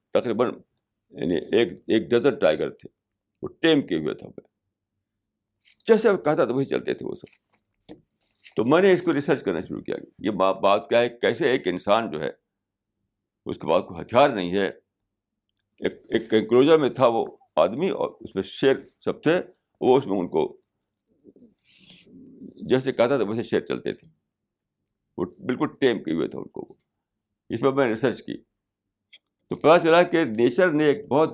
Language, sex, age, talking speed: Urdu, male, 60-79, 175 wpm